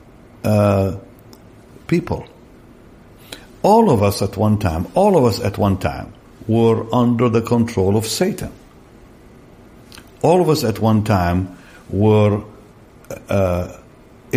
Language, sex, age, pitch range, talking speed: English, male, 60-79, 100-125 Hz, 115 wpm